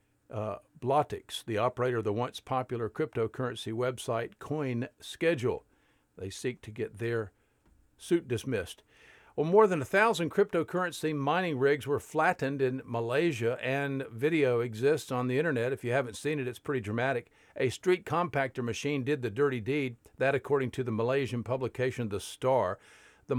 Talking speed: 160 wpm